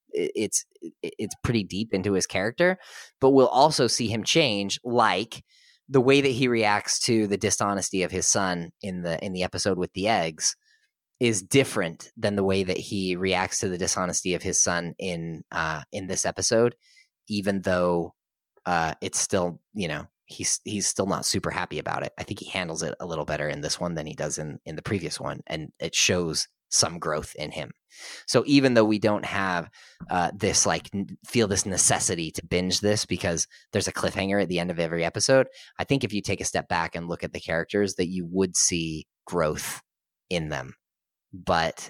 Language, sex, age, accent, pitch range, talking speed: English, male, 30-49, American, 90-115 Hz, 200 wpm